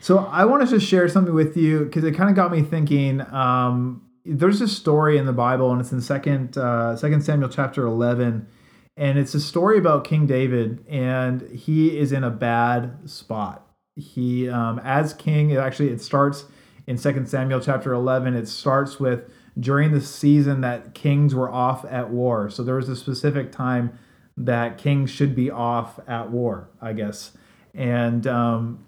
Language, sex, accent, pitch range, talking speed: English, male, American, 120-145 Hz, 180 wpm